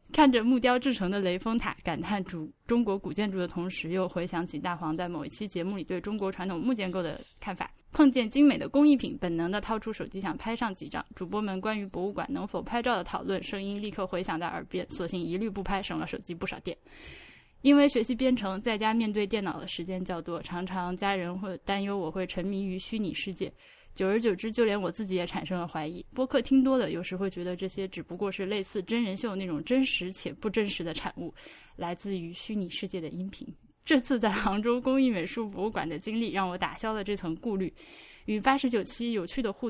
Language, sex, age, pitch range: Chinese, female, 10-29, 180-225 Hz